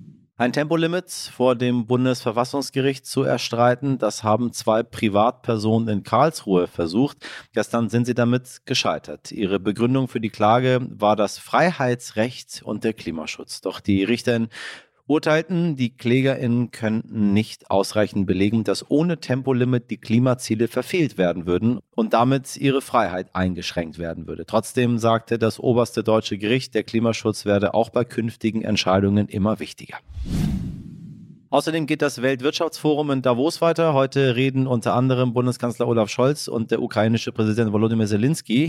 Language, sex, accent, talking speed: German, male, German, 140 wpm